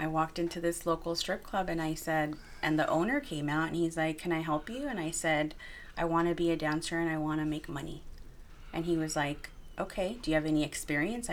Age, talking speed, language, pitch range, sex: 30-49, 250 wpm, English, 145-190 Hz, female